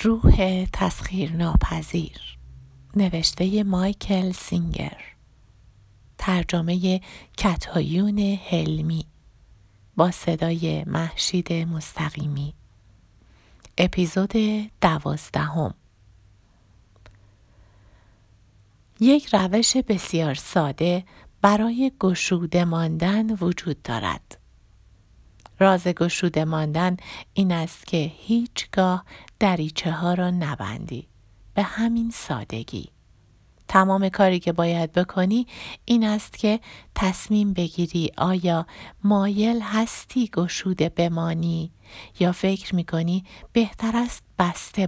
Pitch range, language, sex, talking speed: 150-195 Hz, Persian, female, 75 wpm